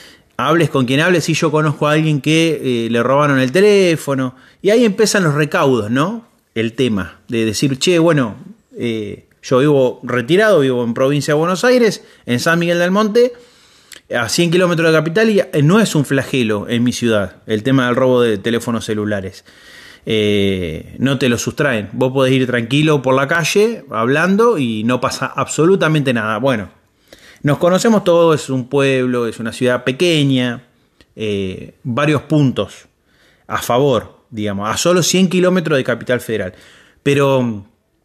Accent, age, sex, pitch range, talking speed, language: Argentinian, 30-49, male, 115-160 Hz, 165 wpm, Spanish